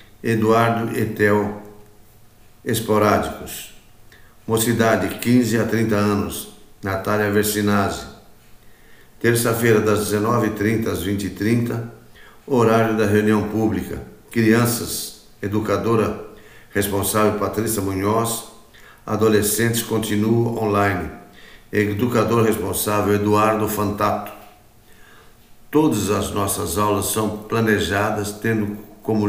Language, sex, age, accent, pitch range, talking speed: Portuguese, male, 60-79, Brazilian, 100-110 Hz, 80 wpm